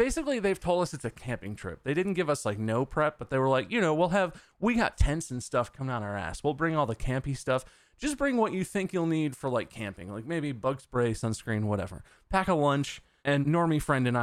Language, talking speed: English, 255 wpm